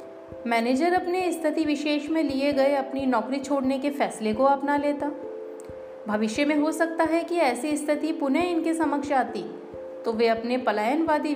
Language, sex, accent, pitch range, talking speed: Hindi, female, native, 220-285 Hz, 165 wpm